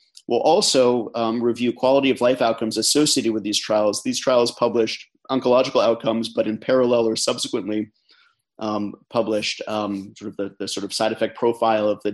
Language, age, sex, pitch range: English, 30-49, male, 105-120 Hz